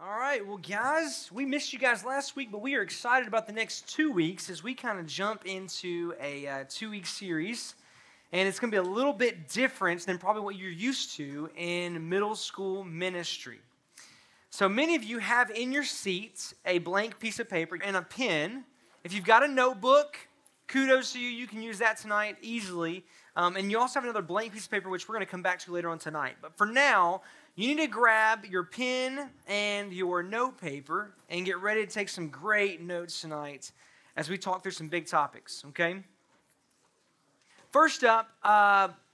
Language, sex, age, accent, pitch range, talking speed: English, male, 20-39, American, 175-245 Hz, 200 wpm